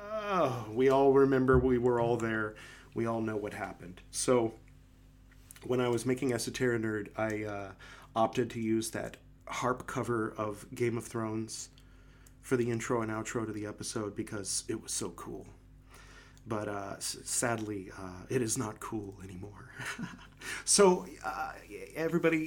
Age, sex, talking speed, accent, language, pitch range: 30-49, male, 150 wpm, American, English, 110-130 Hz